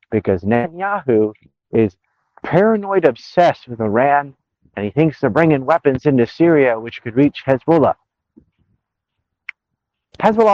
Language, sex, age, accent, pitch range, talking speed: English, male, 50-69, American, 120-170 Hz, 115 wpm